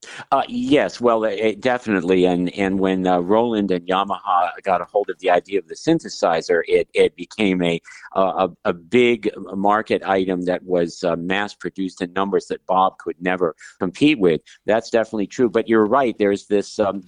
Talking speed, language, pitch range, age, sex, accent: 185 wpm, English, 95-115 Hz, 50-69, male, American